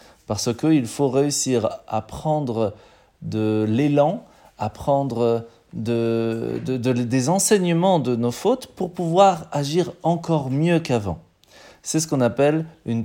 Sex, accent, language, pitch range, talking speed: male, French, French, 110-150 Hz, 140 wpm